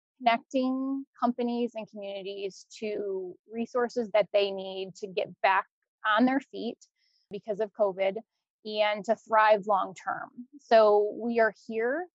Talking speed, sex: 130 wpm, female